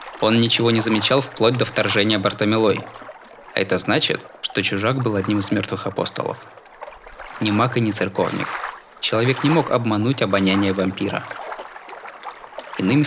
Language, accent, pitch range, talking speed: Russian, native, 100-125 Hz, 140 wpm